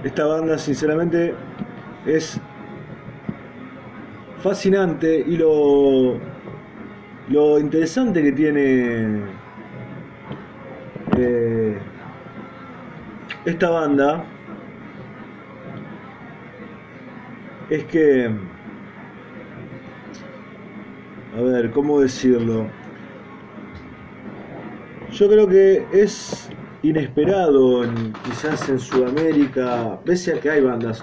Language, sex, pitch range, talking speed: Spanish, male, 115-165 Hz, 65 wpm